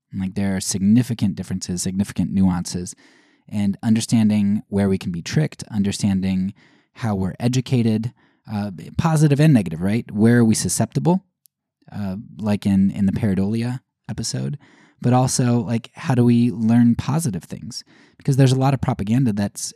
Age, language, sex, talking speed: 20-39, English, male, 150 wpm